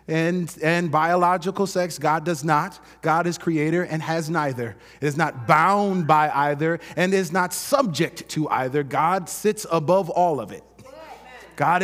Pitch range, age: 155-225 Hz, 30-49